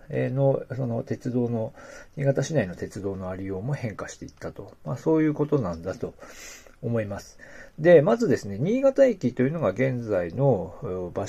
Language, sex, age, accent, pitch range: Japanese, male, 40-59, native, 110-155 Hz